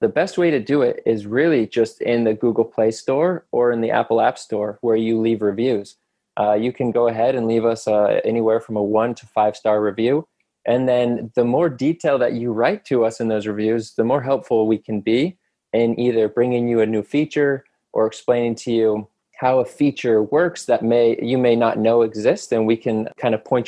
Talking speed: 225 wpm